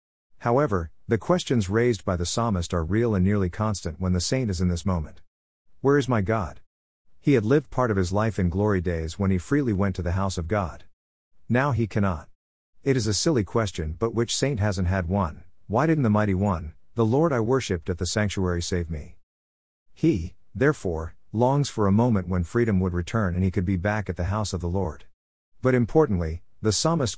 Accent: American